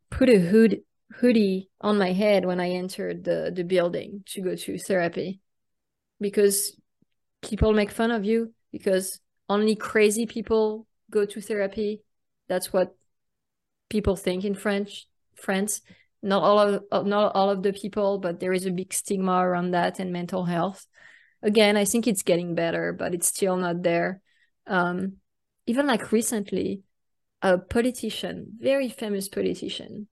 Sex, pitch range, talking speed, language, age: female, 185-220 Hz, 150 wpm, English, 20-39